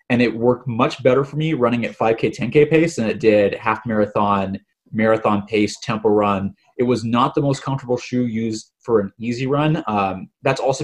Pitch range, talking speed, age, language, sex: 100-130 Hz, 200 wpm, 20-39, English, male